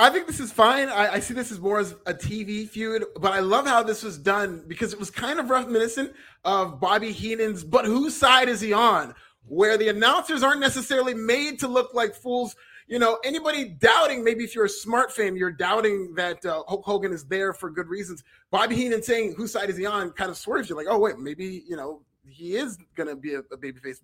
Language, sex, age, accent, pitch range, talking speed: English, male, 30-49, American, 165-225 Hz, 235 wpm